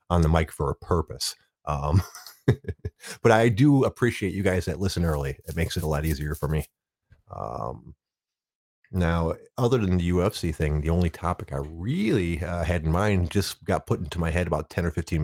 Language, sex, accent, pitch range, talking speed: English, male, American, 80-110 Hz, 195 wpm